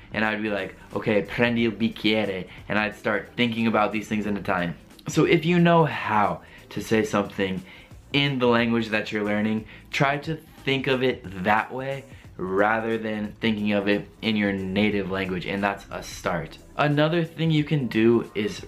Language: Italian